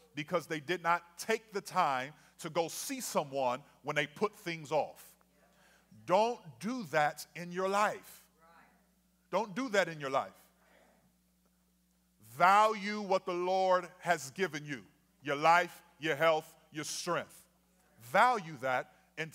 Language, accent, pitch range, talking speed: English, American, 155-195 Hz, 135 wpm